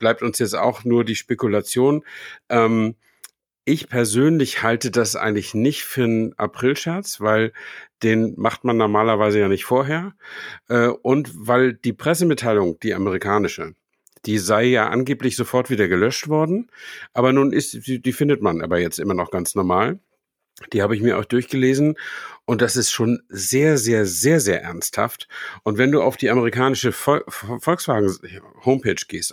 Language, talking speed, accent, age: German, 155 wpm, German, 50-69